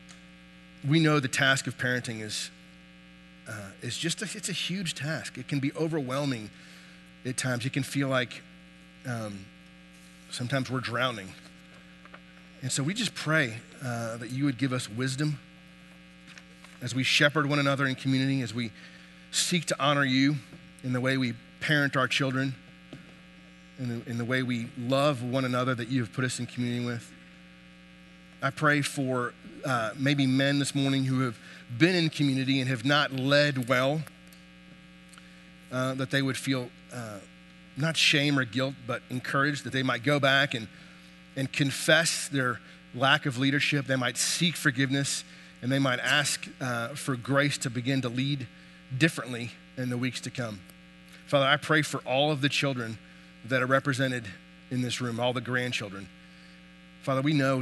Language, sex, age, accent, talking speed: English, male, 30-49, American, 165 wpm